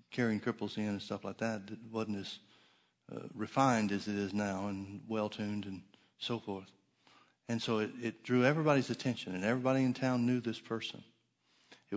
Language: English